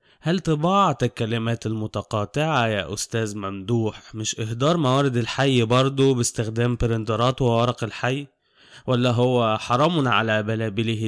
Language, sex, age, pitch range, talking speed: Arabic, male, 20-39, 110-135 Hz, 115 wpm